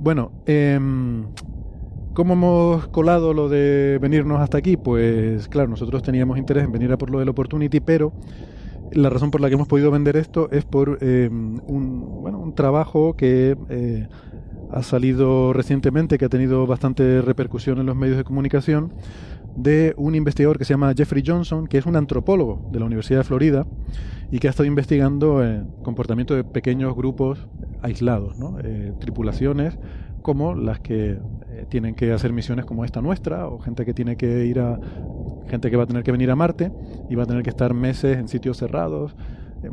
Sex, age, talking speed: male, 30-49, 185 wpm